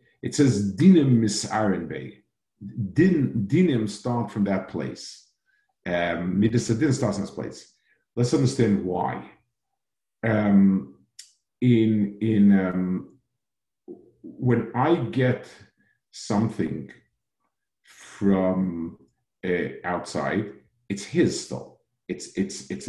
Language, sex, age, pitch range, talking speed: English, male, 50-69, 100-135 Hz, 95 wpm